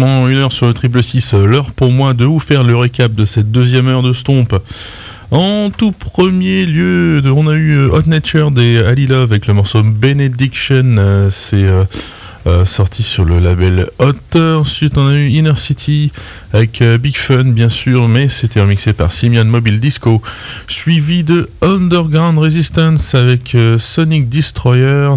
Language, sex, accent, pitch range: English, male, French, 110-150 Hz